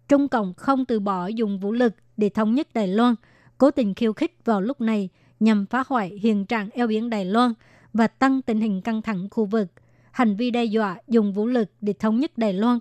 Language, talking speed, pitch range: Vietnamese, 230 wpm, 210-240 Hz